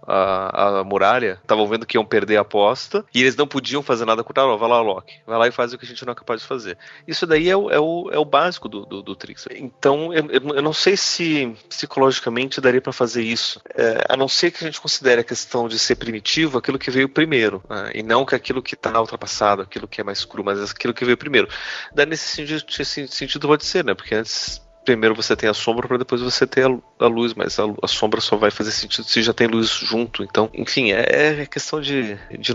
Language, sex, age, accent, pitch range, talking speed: Portuguese, male, 30-49, Brazilian, 110-130 Hz, 250 wpm